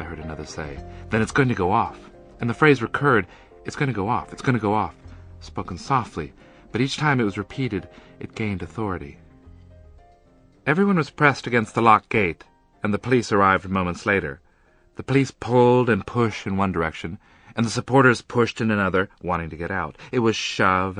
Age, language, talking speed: 40-59, English, 195 wpm